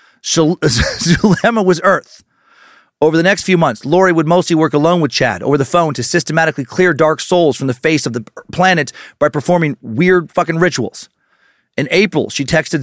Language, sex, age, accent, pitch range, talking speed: English, male, 40-59, American, 140-185 Hz, 180 wpm